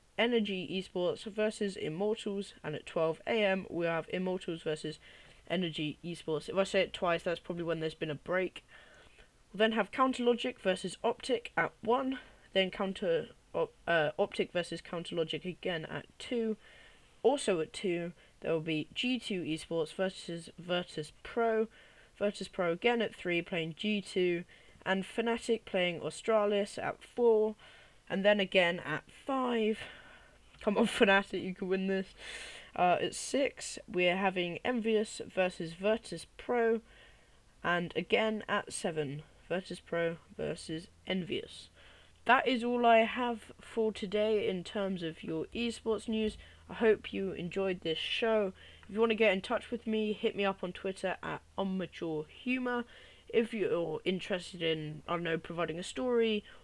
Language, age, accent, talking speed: English, 10-29, British, 155 wpm